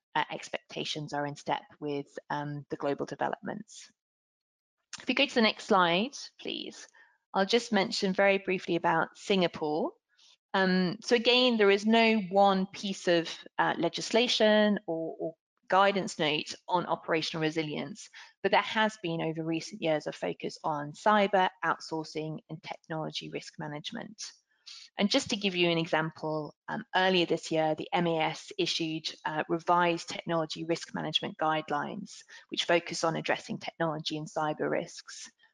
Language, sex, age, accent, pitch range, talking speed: English, female, 20-39, British, 160-200 Hz, 145 wpm